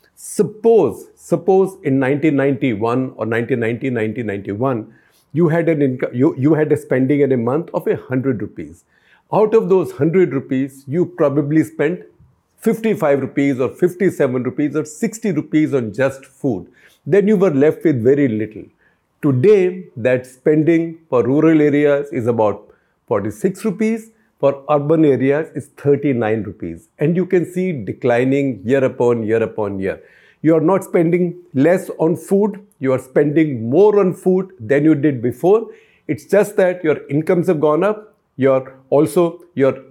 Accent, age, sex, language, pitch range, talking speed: Indian, 50-69, male, English, 130-180 Hz, 155 wpm